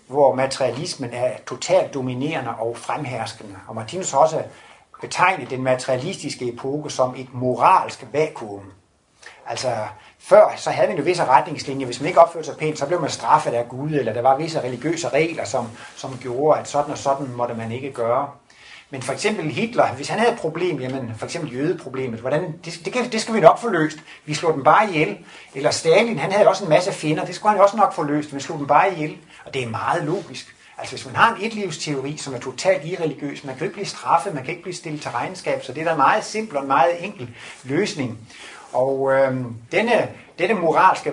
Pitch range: 130-170 Hz